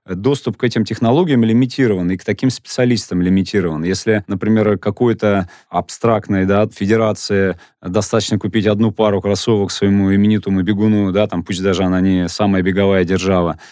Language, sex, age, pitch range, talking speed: Russian, male, 30-49, 90-110 Hz, 130 wpm